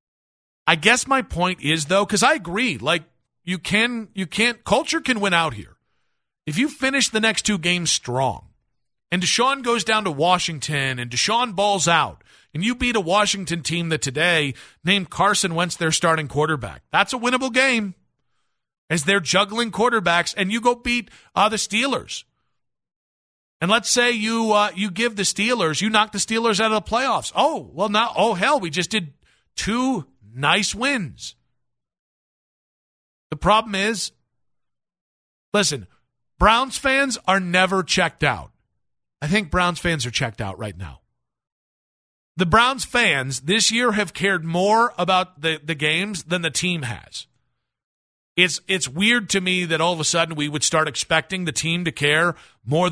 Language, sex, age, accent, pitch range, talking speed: English, male, 40-59, American, 155-220 Hz, 170 wpm